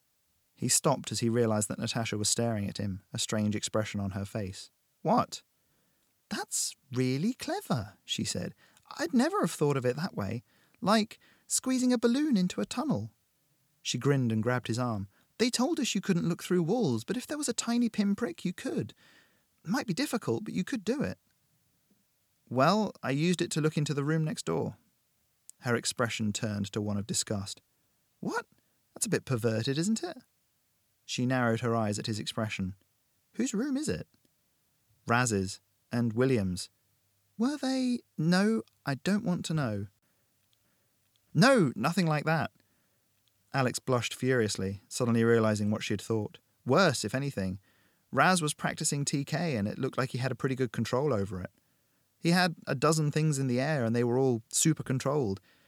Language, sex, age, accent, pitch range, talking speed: English, male, 30-49, British, 110-180 Hz, 175 wpm